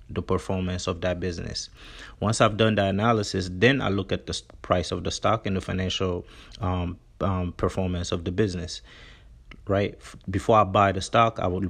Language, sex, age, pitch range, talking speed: English, male, 30-49, 90-110 Hz, 185 wpm